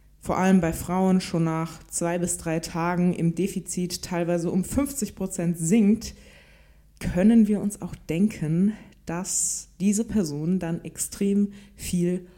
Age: 20-39